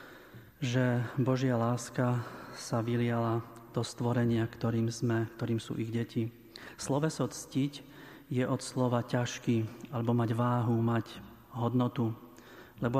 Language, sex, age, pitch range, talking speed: Slovak, male, 40-59, 120-130 Hz, 115 wpm